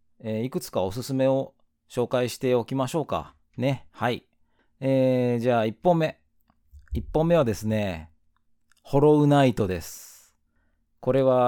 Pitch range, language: 100-135 Hz, Japanese